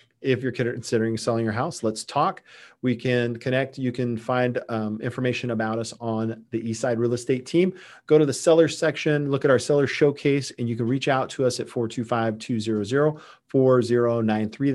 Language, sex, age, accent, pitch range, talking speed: English, male, 40-59, American, 115-140 Hz, 175 wpm